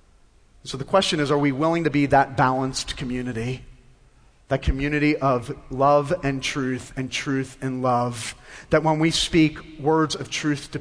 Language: English